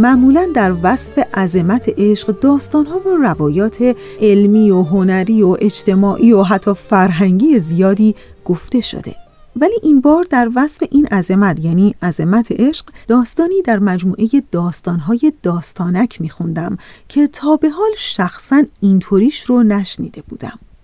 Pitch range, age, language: 195-275 Hz, 40-59, Persian